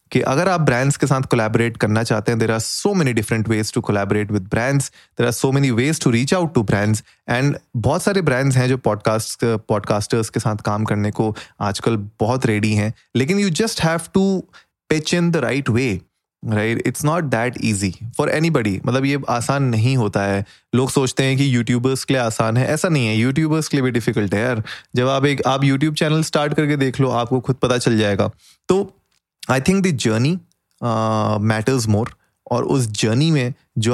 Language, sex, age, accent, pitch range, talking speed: Hindi, male, 20-39, native, 110-140 Hz, 205 wpm